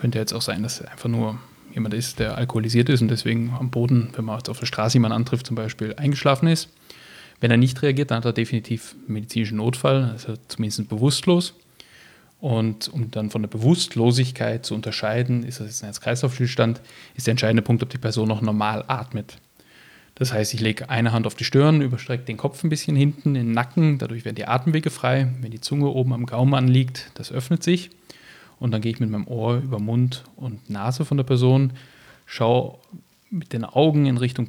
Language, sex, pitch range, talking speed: German, male, 115-140 Hz, 205 wpm